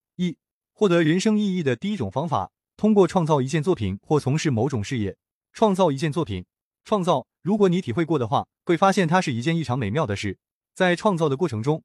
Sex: male